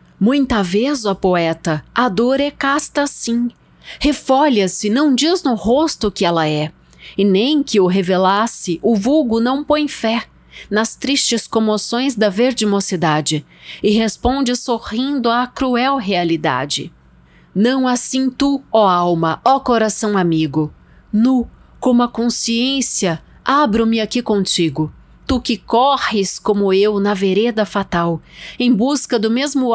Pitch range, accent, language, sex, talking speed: 190-255 Hz, Brazilian, Portuguese, female, 135 wpm